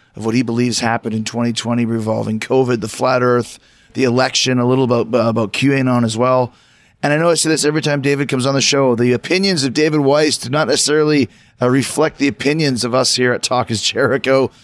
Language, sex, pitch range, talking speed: English, male, 120-150 Hz, 215 wpm